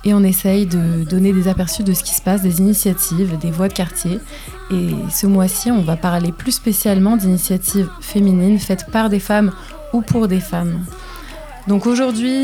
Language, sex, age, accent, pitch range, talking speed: French, female, 20-39, French, 180-210 Hz, 185 wpm